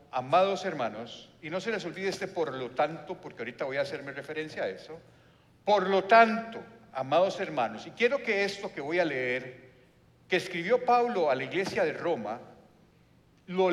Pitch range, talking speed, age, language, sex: 150-225 Hz, 180 wpm, 50-69, Spanish, male